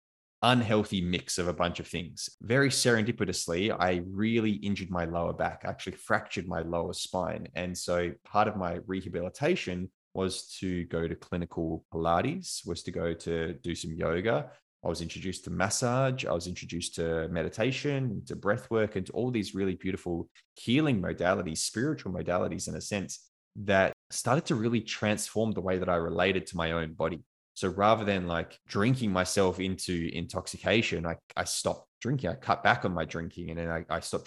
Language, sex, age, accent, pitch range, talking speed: English, male, 20-39, Australian, 85-100 Hz, 180 wpm